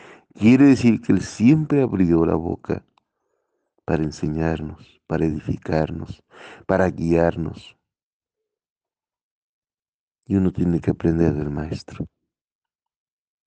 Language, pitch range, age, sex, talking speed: Spanish, 85-115 Hz, 50-69, male, 95 wpm